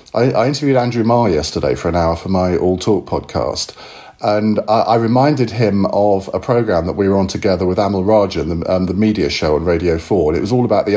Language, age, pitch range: English, 50-69, 100-130 Hz